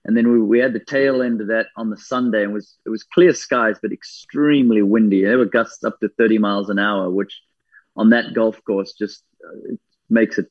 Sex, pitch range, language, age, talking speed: male, 110-125 Hz, English, 30-49, 235 wpm